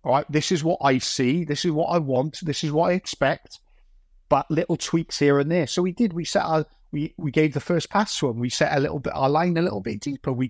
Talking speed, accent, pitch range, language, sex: 280 wpm, British, 125-155 Hz, English, male